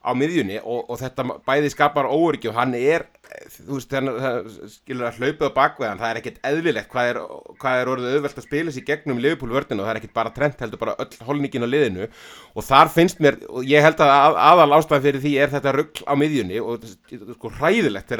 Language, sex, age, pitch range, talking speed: English, male, 30-49, 125-145 Hz, 215 wpm